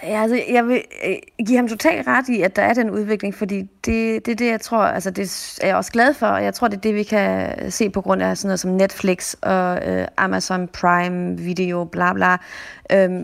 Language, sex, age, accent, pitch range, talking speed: Danish, female, 30-49, native, 185-220 Hz, 235 wpm